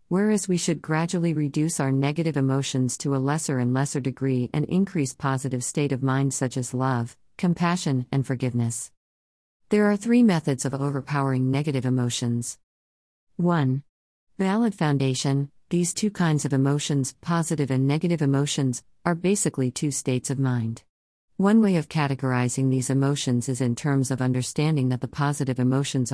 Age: 40-59